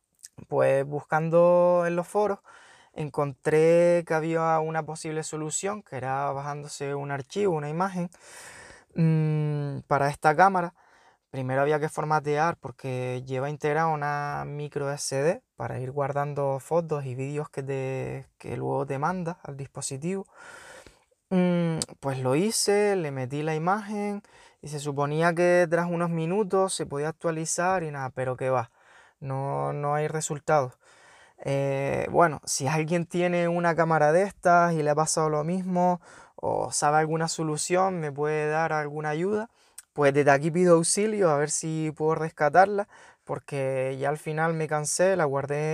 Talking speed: 145 wpm